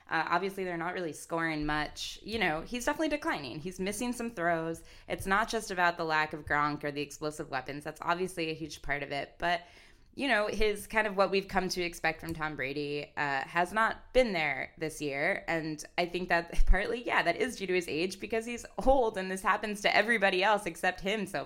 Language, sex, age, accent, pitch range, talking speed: English, female, 20-39, American, 145-185 Hz, 225 wpm